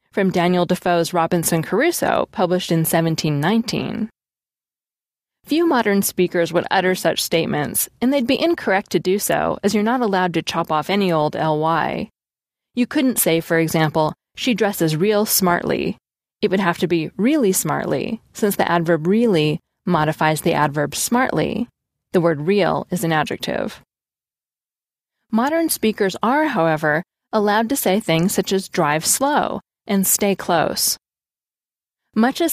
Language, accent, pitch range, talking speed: English, American, 165-220 Hz, 145 wpm